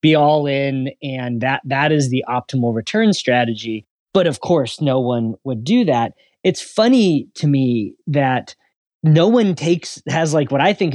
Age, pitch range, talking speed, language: 30-49, 125-170 Hz, 175 wpm, English